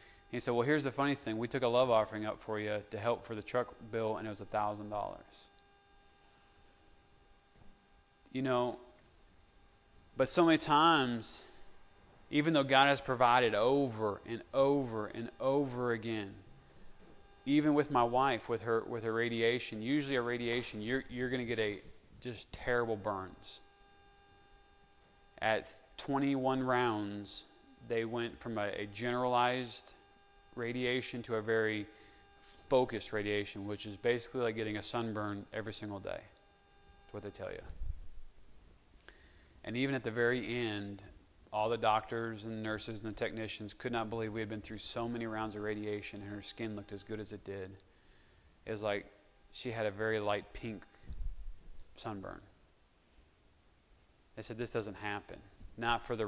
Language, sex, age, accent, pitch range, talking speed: English, male, 20-39, American, 100-120 Hz, 155 wpm